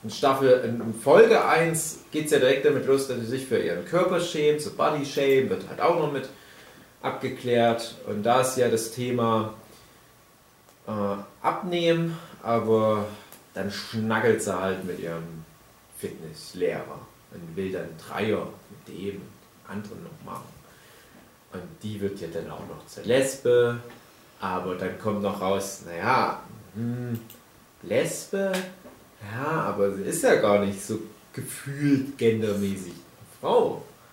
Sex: male